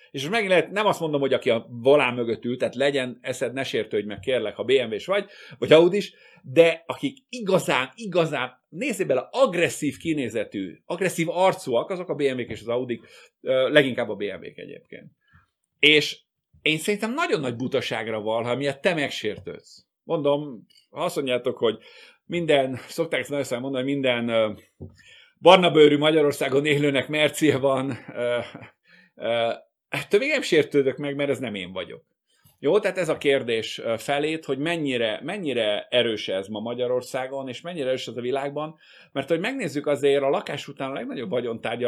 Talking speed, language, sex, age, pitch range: 160 wpm, Hungarian, male, 50-69, 120-165 Hz